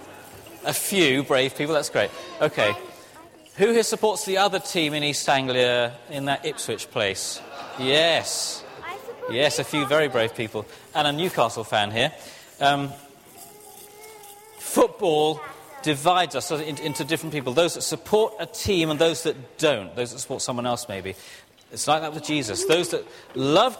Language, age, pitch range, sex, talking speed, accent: English, 30-49, 135-185 Hz, male, 155 wpm, British